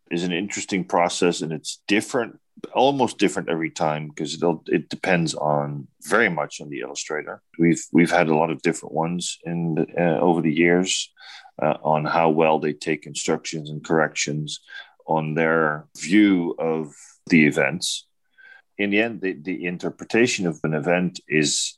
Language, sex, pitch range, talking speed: English, male, 80-95 Hz, 165 wpm